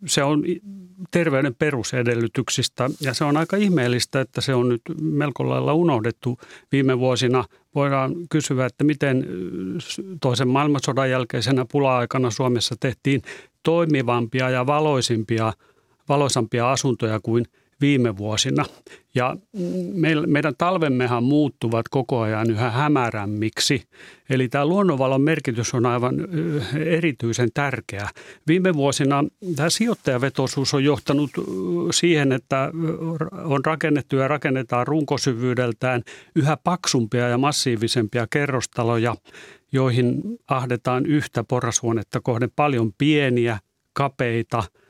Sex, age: male, 40-59